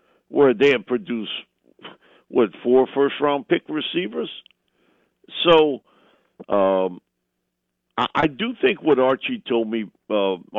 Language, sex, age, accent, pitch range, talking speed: English, male, 50-69, American, 110-155 Hz, 110 wpm